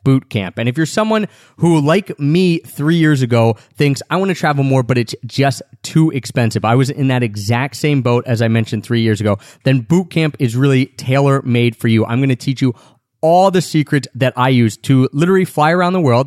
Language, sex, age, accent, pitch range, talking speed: English, male, 30-49, American, 115-145 Hz, 220 wpm